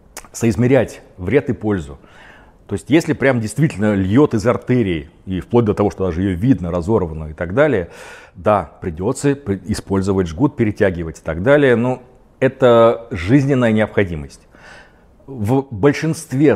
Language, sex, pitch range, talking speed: Russian, male, 95-125 Hz, 140 wpm